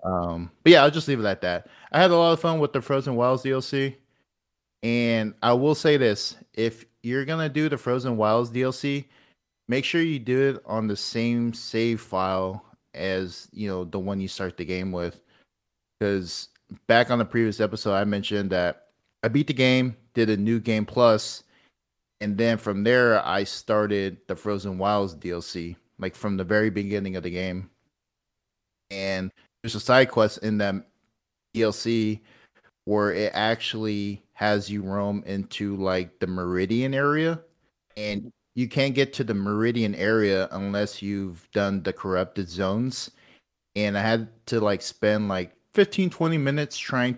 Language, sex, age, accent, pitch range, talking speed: English, male, 30-49, American, 100-125 Hz, 170 wpm